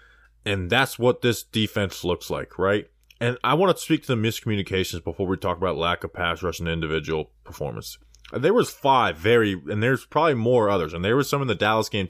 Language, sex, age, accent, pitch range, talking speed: English, male, 20-39, American, 100-140 Hz, 220 wpm